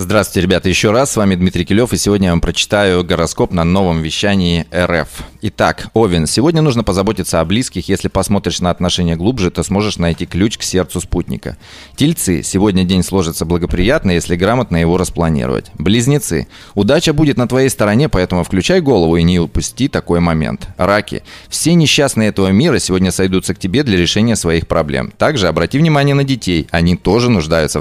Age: 30-49